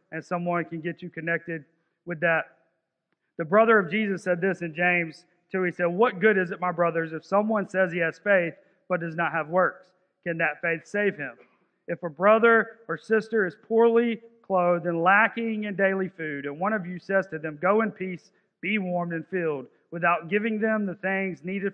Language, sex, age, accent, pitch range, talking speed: English, male, 40-59, American, 170-215 Hz, 205 wpm